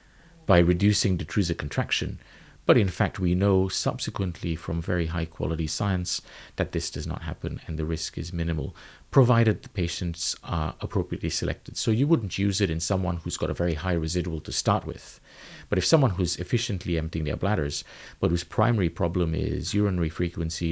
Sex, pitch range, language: male, 85-105 Hz, English